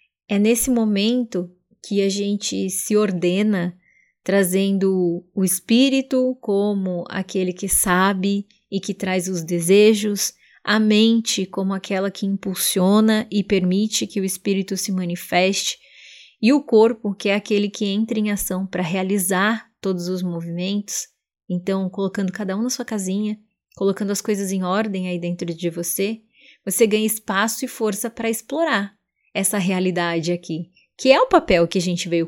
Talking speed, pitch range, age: 150 wpm, 190-230 Hz, 20-39